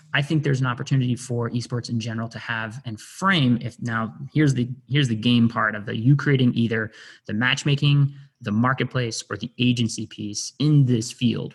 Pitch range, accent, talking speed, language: 115-140 Hz, American, 190 wpm, English